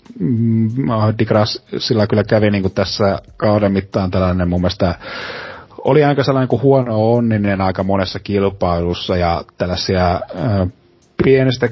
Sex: male